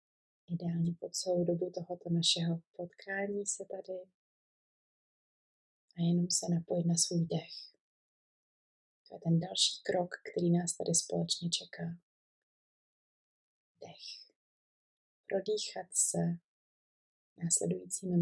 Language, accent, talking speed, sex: Czech, native, 100 wpm, female